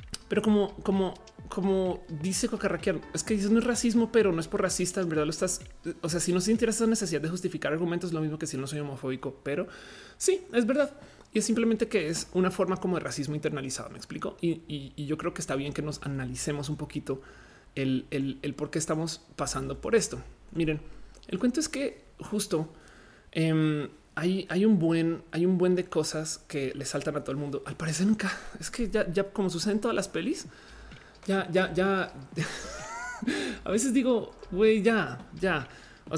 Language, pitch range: Spanish, 150-195 Hz